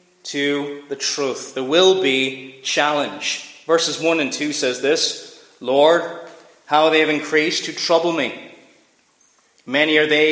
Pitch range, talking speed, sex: 130-165 Hz, 140 wpm, male